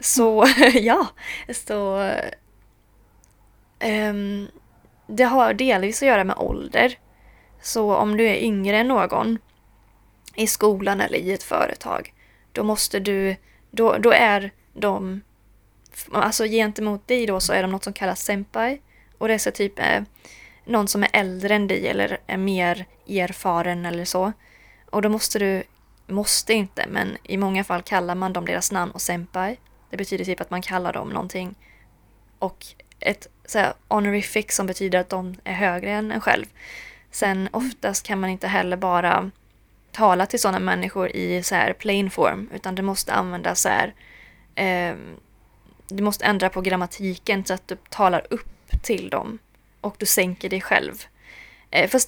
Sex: female